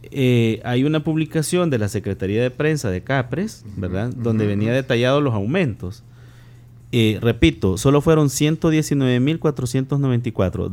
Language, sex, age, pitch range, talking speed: Spanish, male, 30-49, 110-140 Hz, 125 wpm